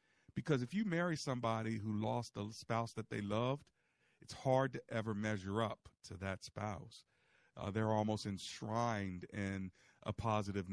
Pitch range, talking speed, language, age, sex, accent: 100-120 Hz, 155 wpm, English, 40-59, male, American